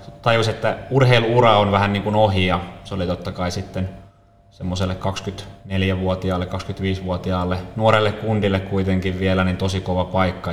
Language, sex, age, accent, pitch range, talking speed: Finnish, male, 20-39, native, 95-105 Hz, 140 wpm